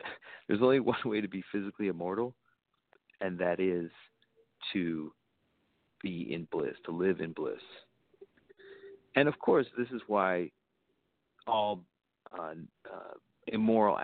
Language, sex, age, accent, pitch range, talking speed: English, male, 50-69, American, 95-115 Hz, 120 wpm